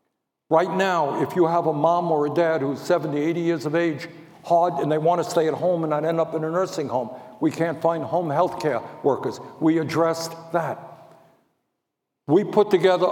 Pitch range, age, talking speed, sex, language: 130-165 Hz, 60-79, 205 wpm, male, English